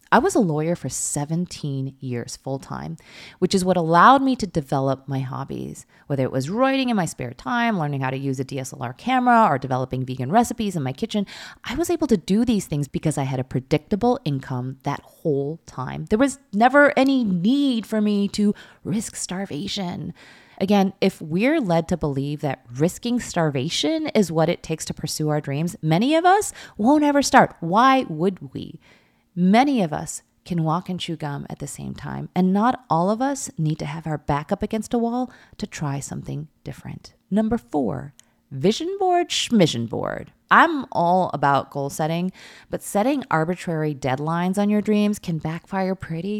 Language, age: English, 30-49